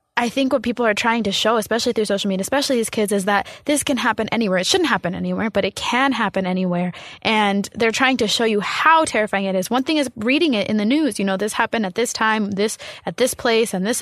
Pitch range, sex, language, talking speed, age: 210-255 Hz, female, English, 260 wpm, 20-39